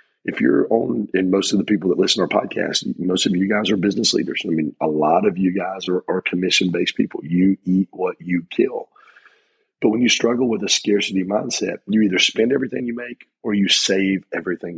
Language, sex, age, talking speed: English, male, 40-59, 220 wpm